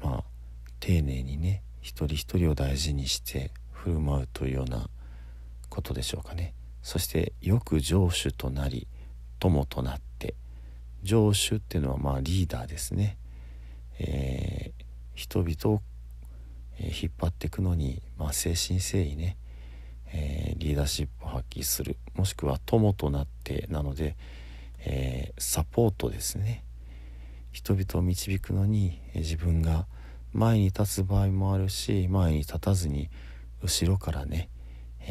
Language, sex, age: Japanese, male, 50-69